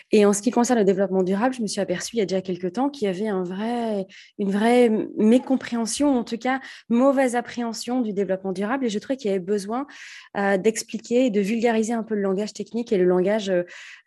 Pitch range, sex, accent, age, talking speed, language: 195-240 Hz, female, French, 20-39, 220 wpm, French